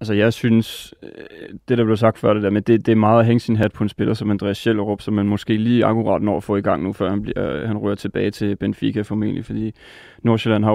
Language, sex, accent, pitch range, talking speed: Danish, male, native, 105-115 Hz, 260 wpm